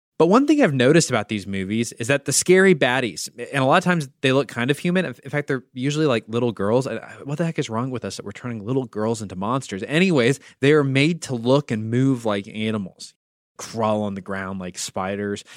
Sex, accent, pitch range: male, American, 120-180 Hz